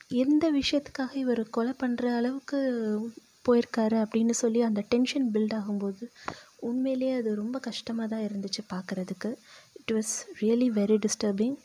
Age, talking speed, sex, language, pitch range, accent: 20-39, 125 wpm, female, Tamil, 210-245 Hz, native